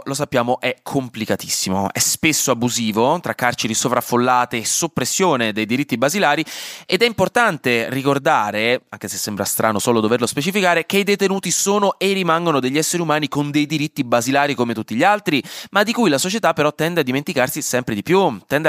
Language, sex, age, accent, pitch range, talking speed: Italian, male, 20-39, native, 120-165 Hz, 180 wpm